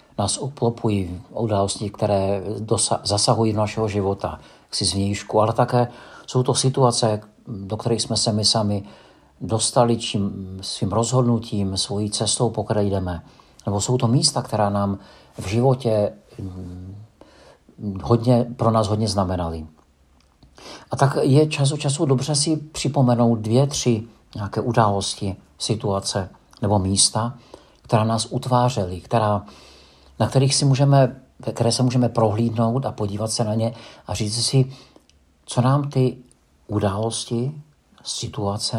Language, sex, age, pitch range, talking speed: Czech, male, 50-69, 100-120 Hz, 125 wpm